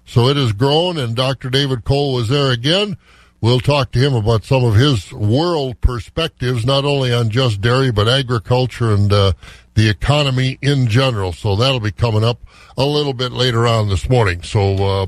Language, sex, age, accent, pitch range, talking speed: English, male, 60-79, American, 125-170 Hz, 195 wpm